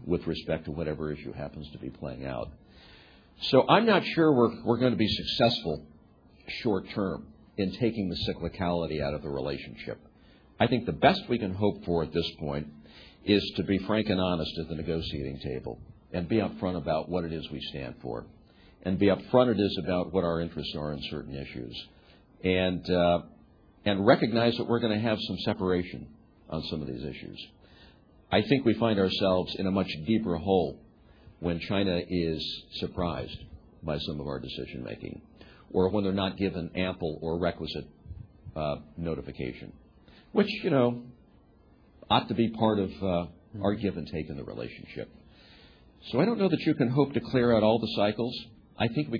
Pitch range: 80-105 Hz